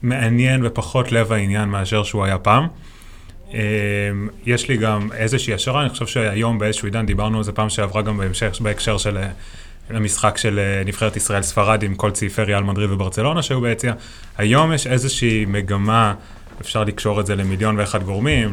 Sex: male